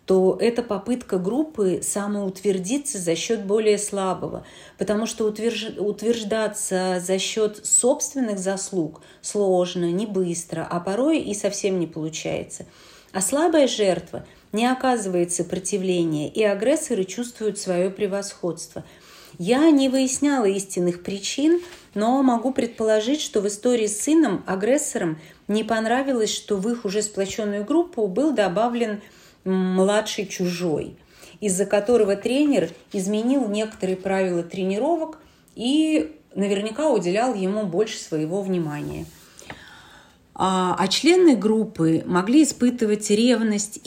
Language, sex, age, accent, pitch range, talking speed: Russian, female, 40-59, native, 185-235 Hz, 115 wpm